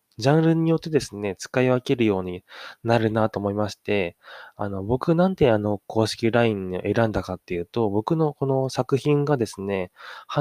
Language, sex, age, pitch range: Japanese, male, 20-39, 100-145 Hz